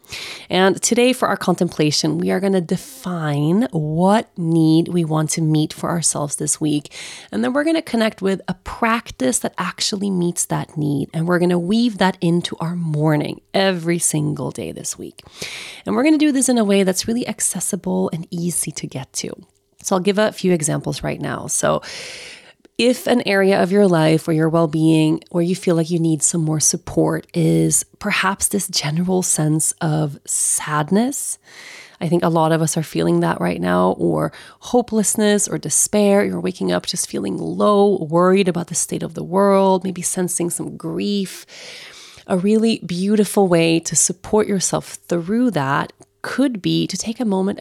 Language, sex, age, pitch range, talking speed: English, female, 30-49, 160-205 Hz, 185 wpm